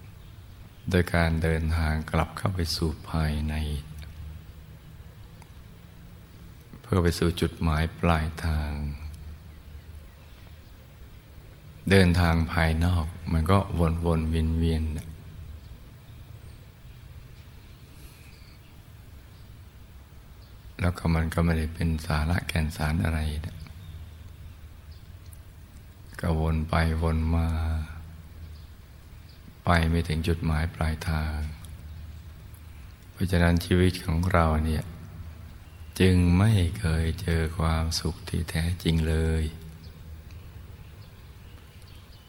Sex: male